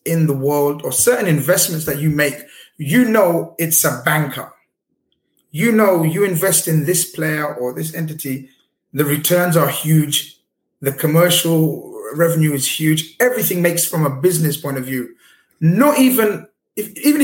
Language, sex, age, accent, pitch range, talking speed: English, male, 30-49, British, 140-180 Hz, 155 wpm